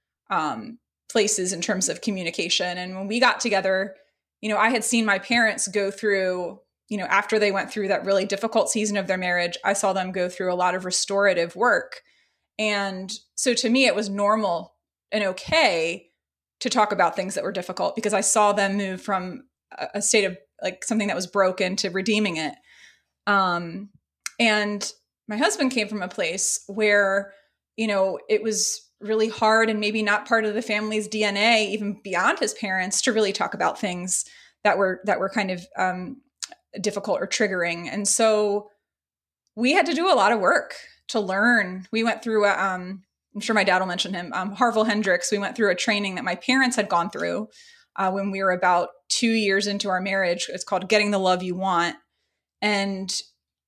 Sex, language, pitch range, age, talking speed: female, English, 185-220 Hz, 20-39, 195 wpm